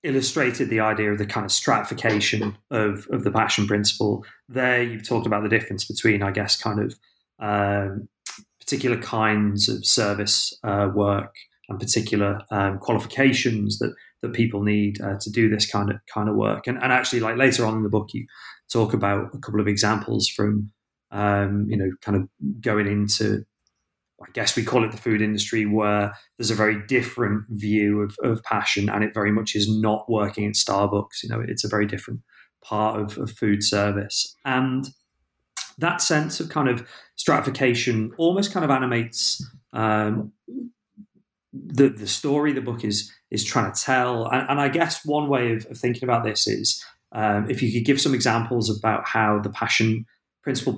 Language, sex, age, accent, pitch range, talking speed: English, male, 30-49, British, 105-120 Hz, 185 wpm